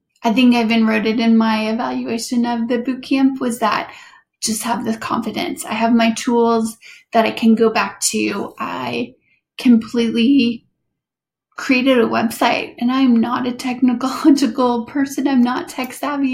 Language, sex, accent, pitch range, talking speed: English, female, American, 225-250 Hz, 160 wpm